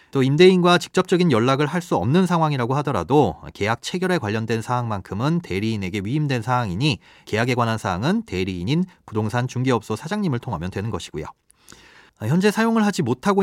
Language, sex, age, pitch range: Korean, male, 30-49, 110-160 Hz